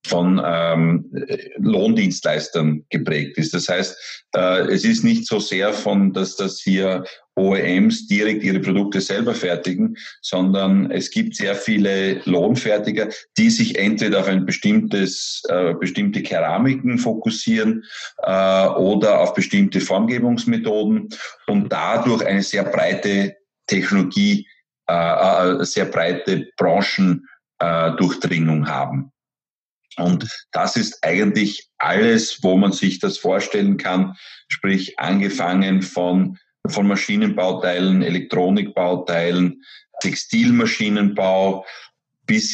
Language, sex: German, male